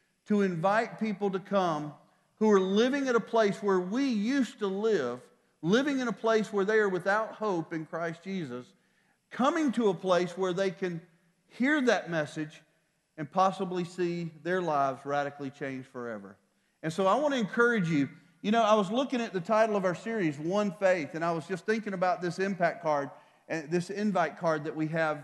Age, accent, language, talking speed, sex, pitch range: 40-59, American, English, 195 wpm, male, 155-200 Hz